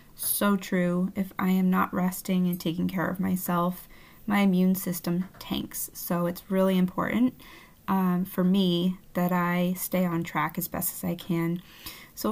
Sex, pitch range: female, 180-210 Hz